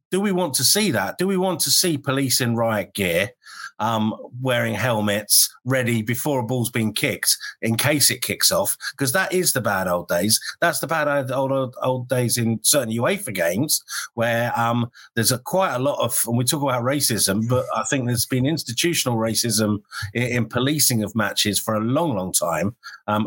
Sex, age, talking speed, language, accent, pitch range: male, 50-69, 205 wpm, English, British, 110-140 Hz